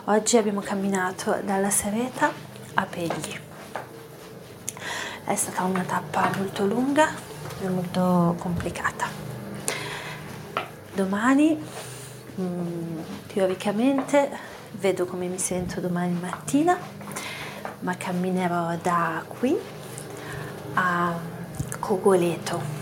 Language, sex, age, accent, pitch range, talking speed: Italian, female, 30-49, native, 175-205 Hz, 80 wpm